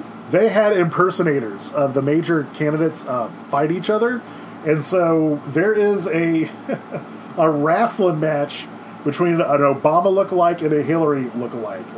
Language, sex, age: English, male, 20-39